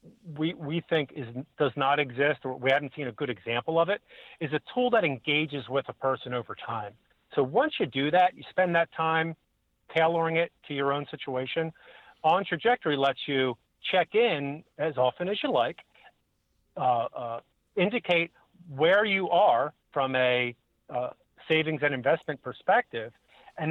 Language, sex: English, male